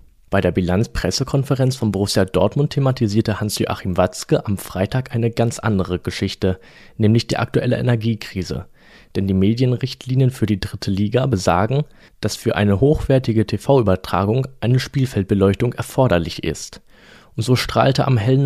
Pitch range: 100-125 Hz